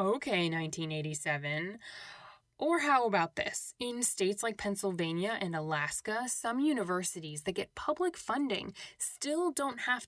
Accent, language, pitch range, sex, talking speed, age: American, English, 175-240 Hz, female, 125 wpm, 10-29